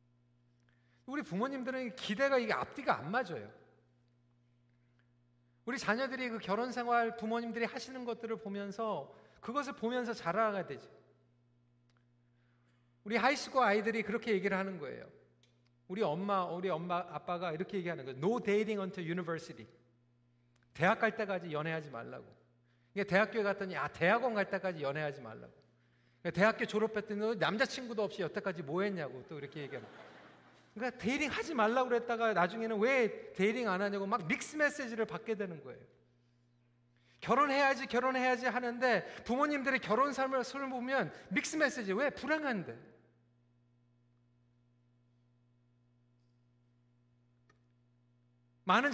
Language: Korean